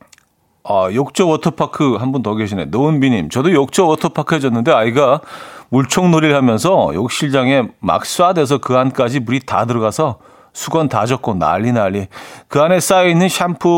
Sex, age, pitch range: male, 40-59, 100-145 Hz